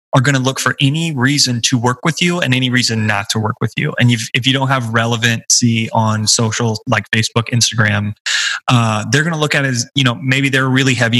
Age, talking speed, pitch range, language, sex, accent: 20-39, 245 wpm, 110-125 Hz, English, male, American